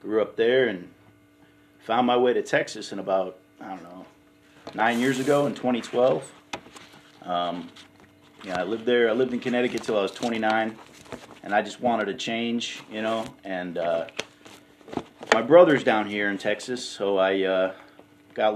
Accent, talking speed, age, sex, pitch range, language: American, 165 wpm, 30-49, male, 100-125 Hz, English